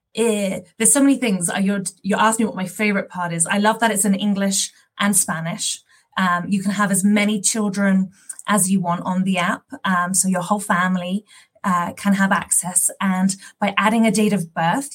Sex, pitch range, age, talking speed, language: female, 190-225 Hz, 20-39, 200 wpm, English